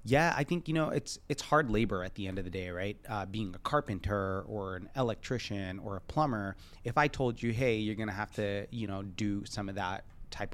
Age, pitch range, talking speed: 30-49, 95-120 Hz, 240 wpm